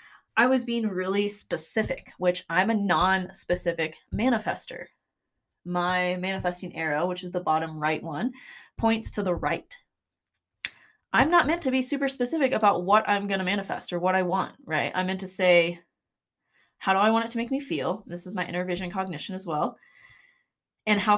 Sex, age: female, 20-39